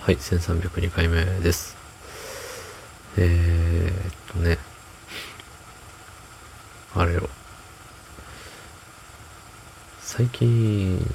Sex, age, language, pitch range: male, 40-59, Japanese, 90-110 Hz